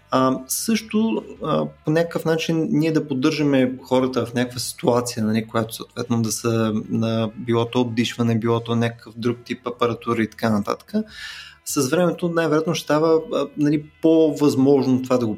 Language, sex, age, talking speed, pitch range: Bulgarian, male, 20-39, 150 wpm, 115-155 Hz